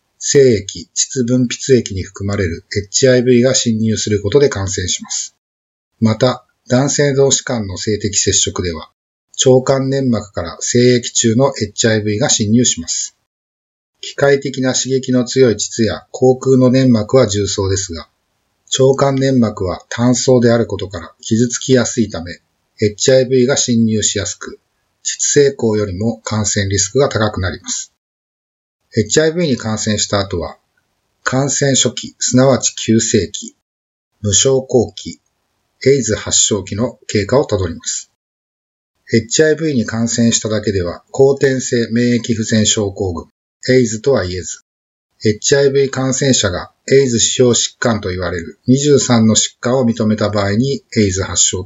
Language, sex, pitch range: Japanese, male, 100-130 Hz